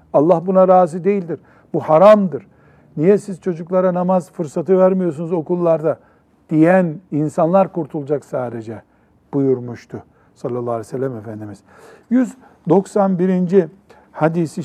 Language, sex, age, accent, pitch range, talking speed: Turkish, male, 60-79, native, 140-185 Hz, 100 wpm